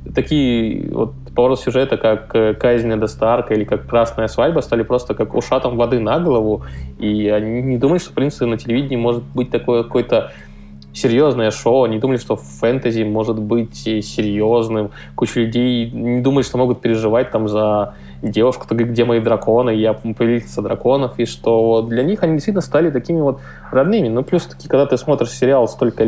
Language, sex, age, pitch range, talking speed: Russian, male, 20-39, 110-120 Hz, 170 wpm